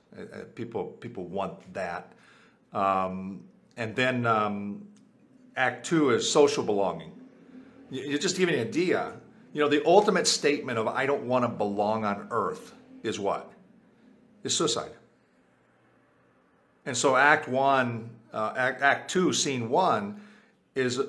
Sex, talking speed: male, 130 wpm